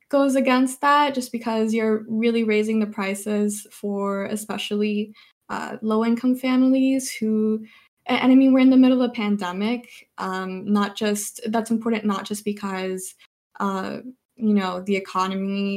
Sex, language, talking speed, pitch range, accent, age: female, English, 150 wpm, 190-225 Hz, American, 20-39